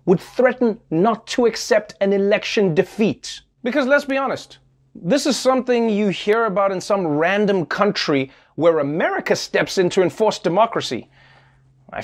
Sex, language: male, English